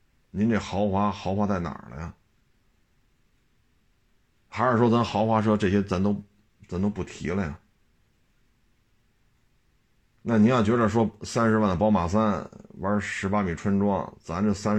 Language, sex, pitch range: Chinese, male, 90-110 Hz